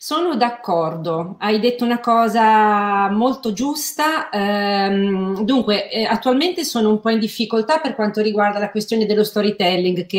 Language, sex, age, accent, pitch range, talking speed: Italian, female, 40-59, native, 195-225 Hz, 145 wpm